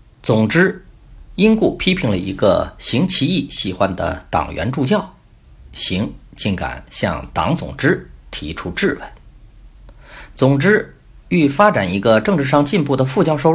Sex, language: male, Chinese